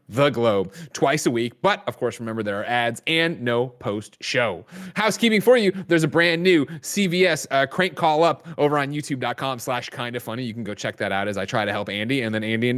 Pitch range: 125-185 Hz